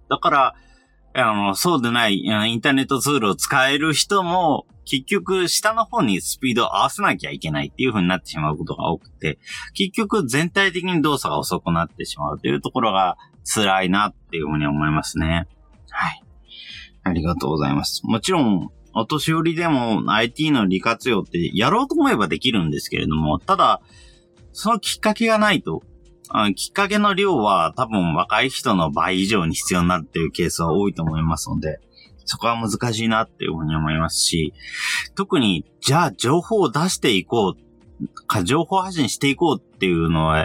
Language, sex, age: Japanese, male, 40-59